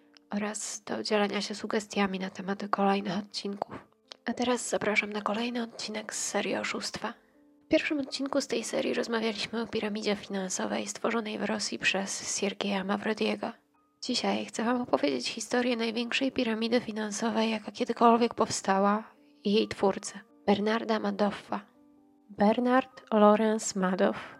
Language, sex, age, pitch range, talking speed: Polish, female, 20-39, 195-230 Hz, 130 wpm